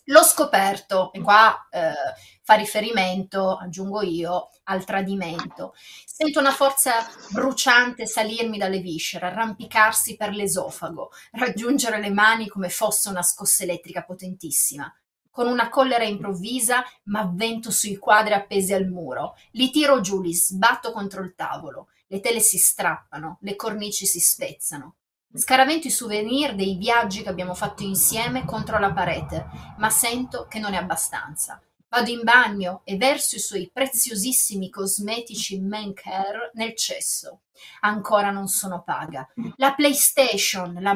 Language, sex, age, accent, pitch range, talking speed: Italian, female, 30-49, native, 195-235 Hz, 140 wpm